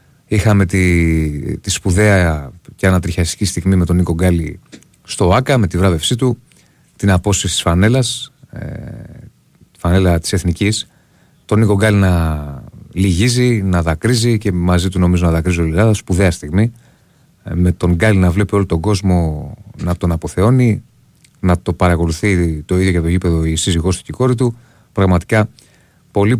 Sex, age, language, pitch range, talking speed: male, 30-49, Greek, 90-115 Hz, 160 wpm